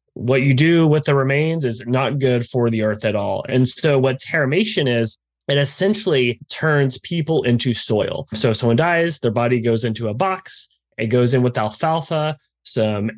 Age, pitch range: 30-49, 120-155 Hz